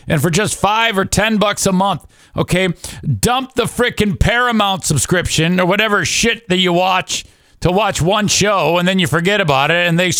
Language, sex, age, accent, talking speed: English, male, 50-69, American, 195 wpm